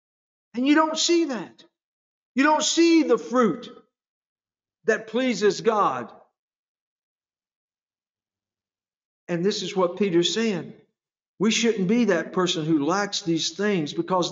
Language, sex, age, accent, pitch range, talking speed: English, male, 50-69, American, 175-245 Hz, 120 wpm